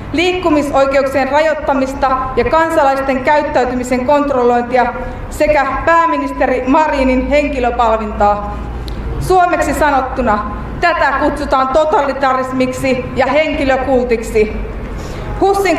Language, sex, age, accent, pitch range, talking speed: Finnish, female, 30-49, native, 255-305 Hz, 70 wpm